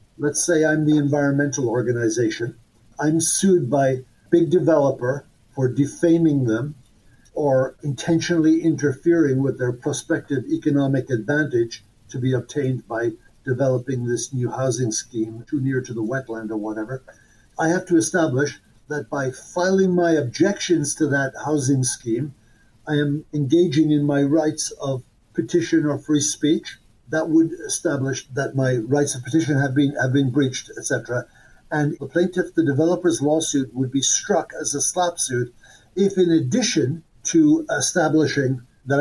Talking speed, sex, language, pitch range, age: 145 wpm, male, English, 130-160 Hz, 60-79